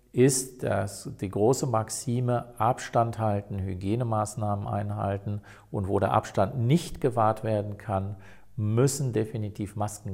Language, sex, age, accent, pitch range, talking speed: German, male, 50-69, German, 100-120 Hz, 120 wpm